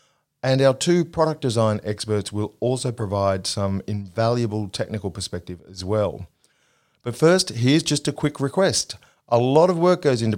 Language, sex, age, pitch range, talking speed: English, male, 40-59, 100-135 Hz, 160 wpm